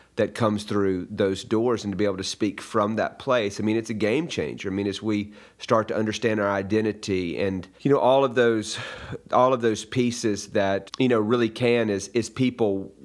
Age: 30-49